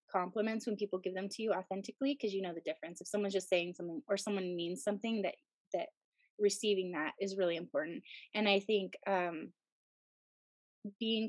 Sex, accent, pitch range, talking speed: female, American, 205-275 Hz, 180 wpm